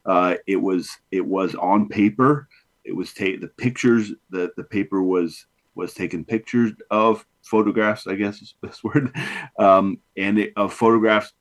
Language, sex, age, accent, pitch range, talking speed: English, male, 30-49, American, 90-110 Hz, 170 wpm